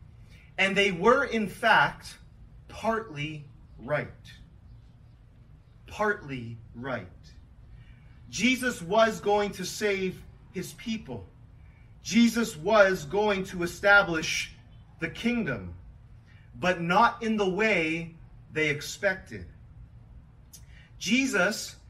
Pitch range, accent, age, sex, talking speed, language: 125-205 Hz, American, 30-49, male, 85 wpm, English